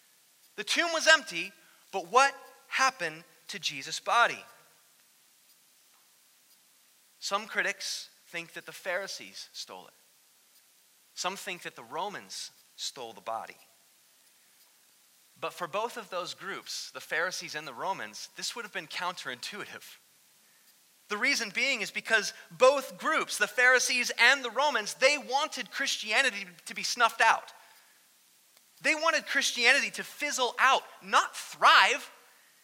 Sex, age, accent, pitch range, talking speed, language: male, 30-49, American, 195-270 Hz, 125 wpm, English